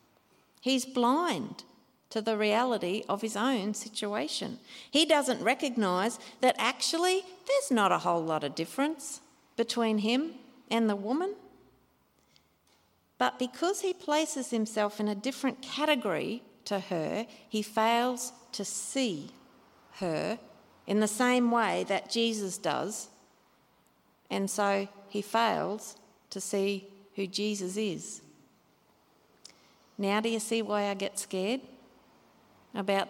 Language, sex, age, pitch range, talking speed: English, female, 50-69, 205-255 Hz, 120 wpm